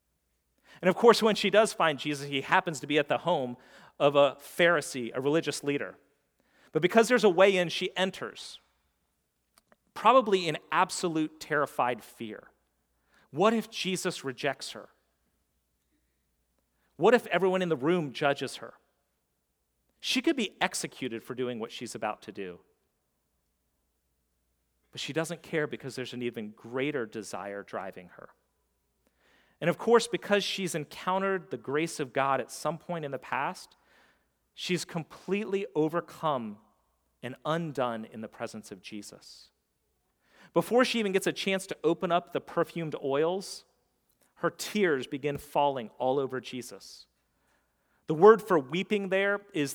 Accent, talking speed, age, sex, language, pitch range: American, 145 wpm, 40-59, male, English, 115-180 Hz